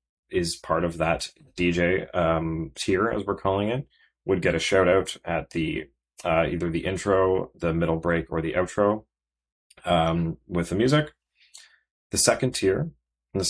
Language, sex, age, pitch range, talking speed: English, male, 30-49, 80-95 Hz, 165 wpm